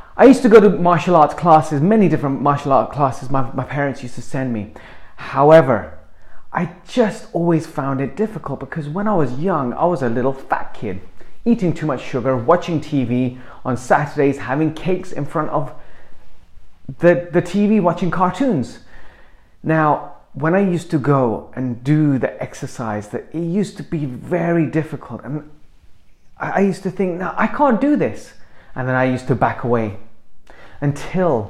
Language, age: English, 30-49